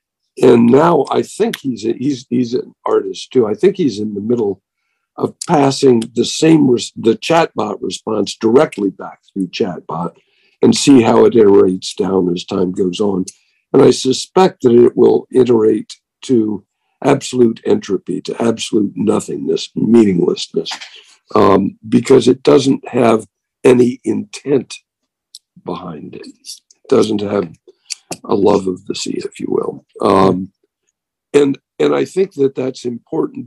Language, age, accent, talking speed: English, 60-79, American, 145 wpm